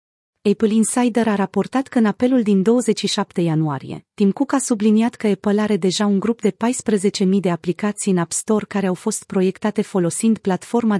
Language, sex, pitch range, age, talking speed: Romanian, female, 175-220 Hz, 30-49, 180 wpm